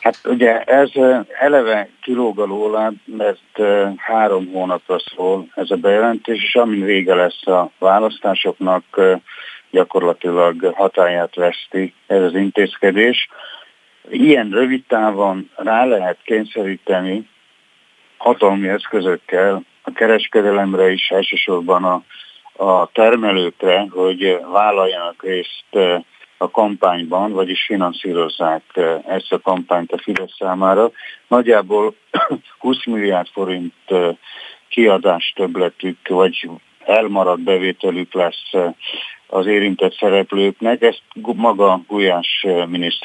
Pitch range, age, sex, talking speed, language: 90-110 Hz, 50-69, male, 95 wpm, Hungarian